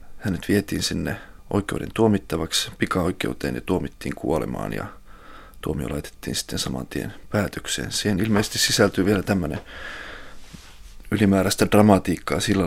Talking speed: 115 wpm